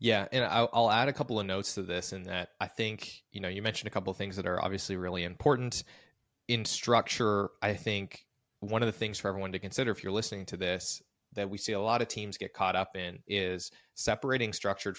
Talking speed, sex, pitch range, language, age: 230 wpm, male, 95-110 Hz, English, 20-39